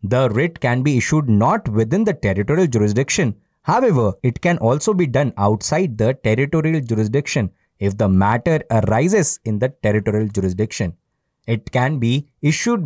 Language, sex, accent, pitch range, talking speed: English, male, Indian, 115-175 Hz, 150 wpm